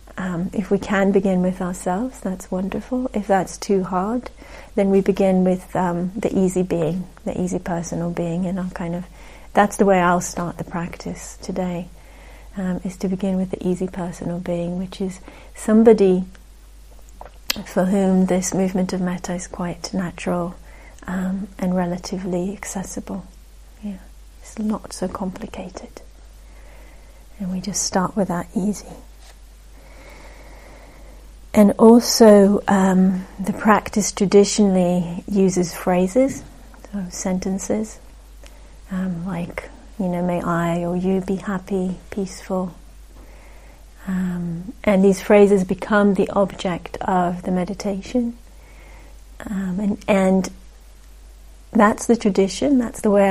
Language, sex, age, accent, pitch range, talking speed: English, female, 30-49, British, 180-205 Hz, 125 wpm